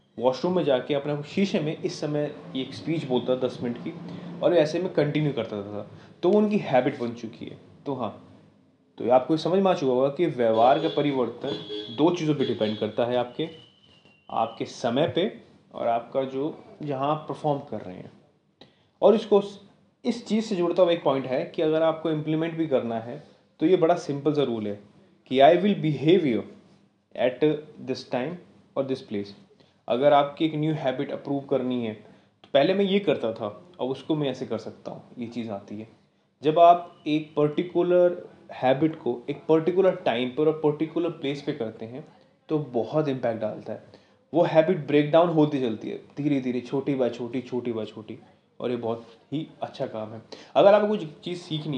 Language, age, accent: Hindi, 30-49, native